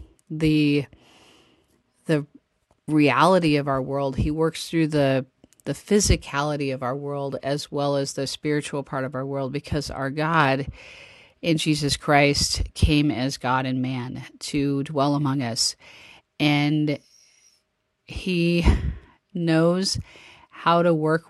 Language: English